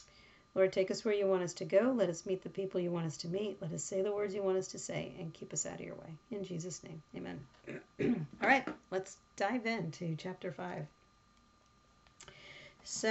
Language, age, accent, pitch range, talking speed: English, 50-69, American, 180-210 Hz, 220 wpm